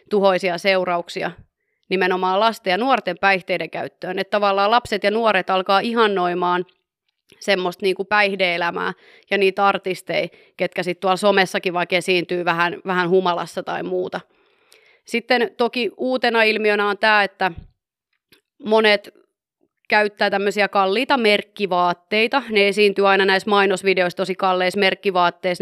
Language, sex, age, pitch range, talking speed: Finnish, female, 30-49, 185-220 Hz, 120 wpm